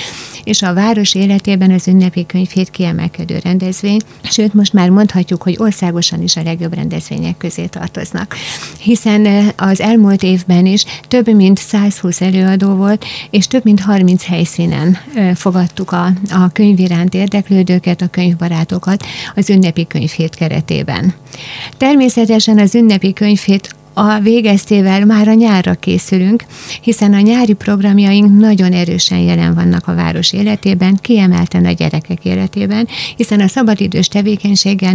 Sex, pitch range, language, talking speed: female, 180-210 Hz, Hungarian, 130 wpm